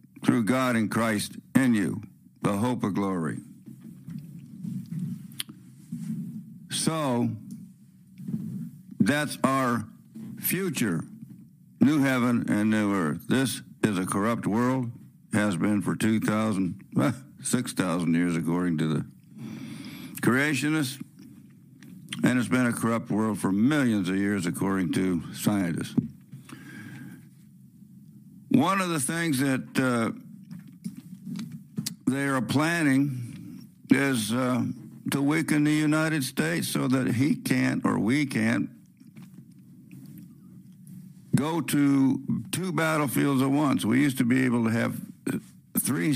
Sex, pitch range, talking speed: male, 110-175 Hz, 110 wpm